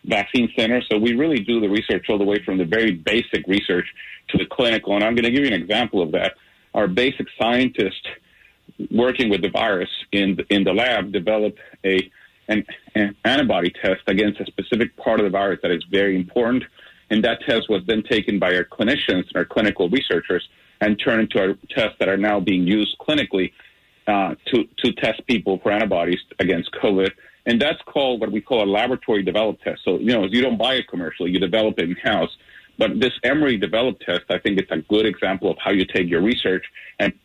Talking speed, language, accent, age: 210 wpm, English, American, 40-59